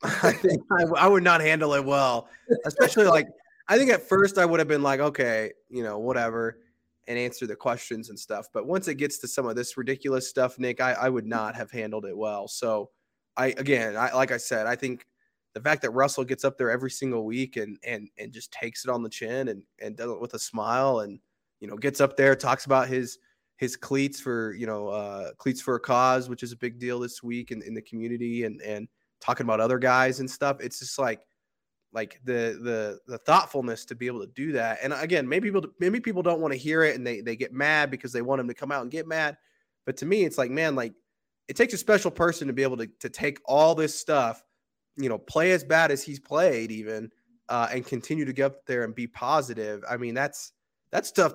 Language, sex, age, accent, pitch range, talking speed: English, male, 20-39, American, 120-145 Hz, 240 wpm